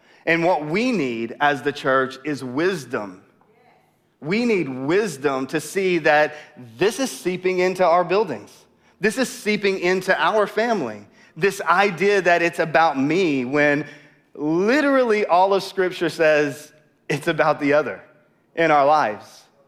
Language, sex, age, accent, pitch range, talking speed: English, male, 30-49, American, 135-175 Hz, 140 wpm